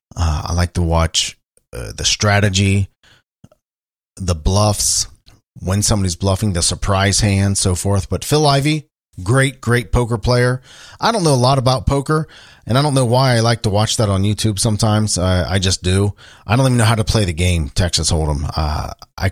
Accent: American